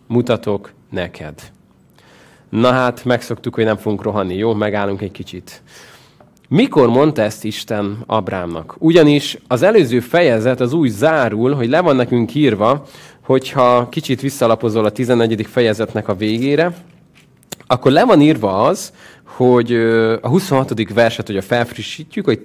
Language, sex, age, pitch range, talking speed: Hungarian, male, 30-49, 110-140 Hz, 135 wpm